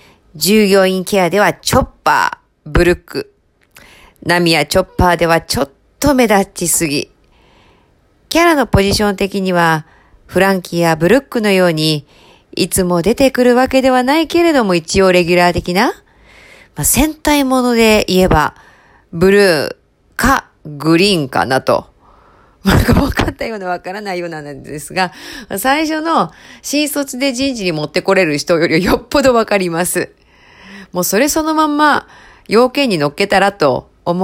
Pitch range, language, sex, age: 175-270 Hz, Japanese, female, 40-59